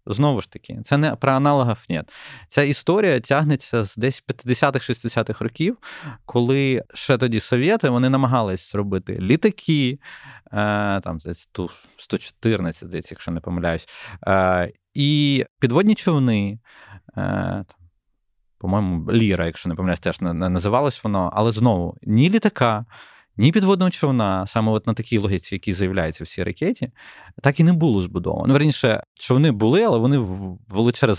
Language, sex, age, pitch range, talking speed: Ukrainian, male, 20-39, 95-130 Hz, 135 wpm